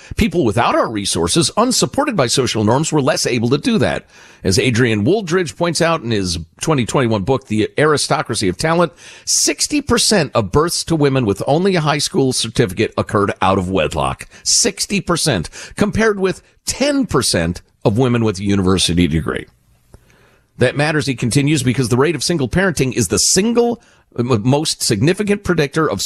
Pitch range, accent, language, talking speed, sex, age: 95-140 Hz, American, English, 160 wpm, male, 50-69